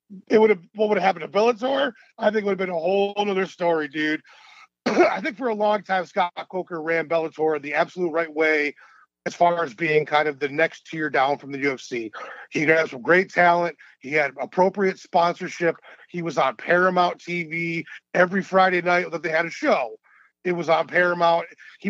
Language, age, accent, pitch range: English, 40-59, American, 165-200 Hz